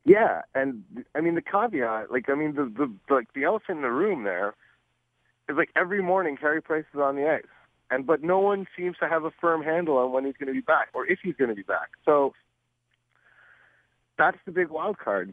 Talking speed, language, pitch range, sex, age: 225 wpm, English, 120-155 Hz, male, 40-59